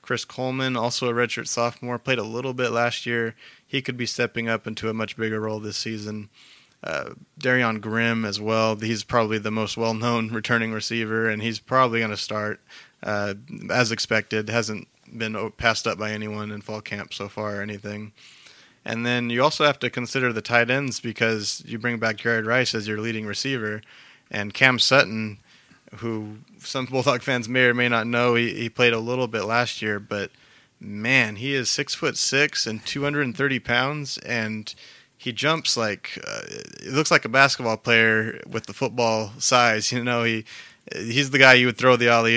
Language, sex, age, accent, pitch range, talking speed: English, male, 30-49, American, 110-125 Hz, 195 wpm